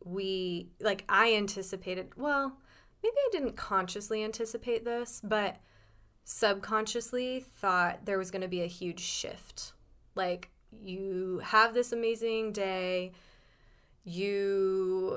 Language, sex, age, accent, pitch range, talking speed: English, female, 20-39, American, 185-225 Hz, 115 wpm